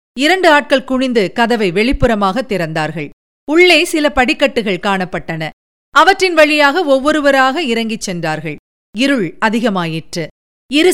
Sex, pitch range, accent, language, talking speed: female, 200-300 Hz, native, Tamil, 100 wpm